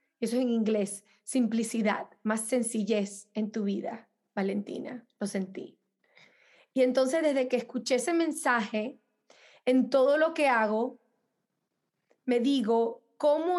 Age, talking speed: 20-39, 125 wpm